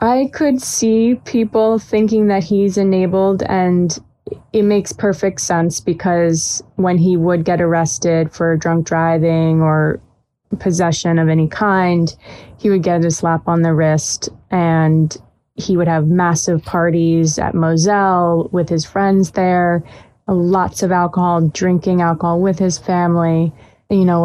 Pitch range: 165-190 Hz